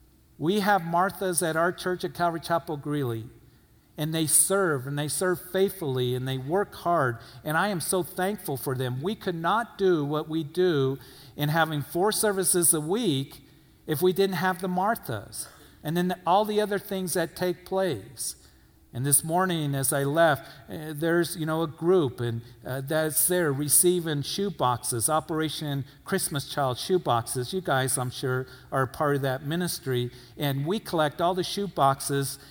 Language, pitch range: English, 135-175 Hz